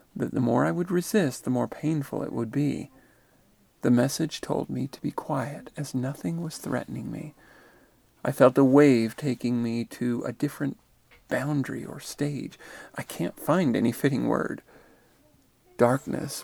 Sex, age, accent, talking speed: male, 40-59, American, 155 wpm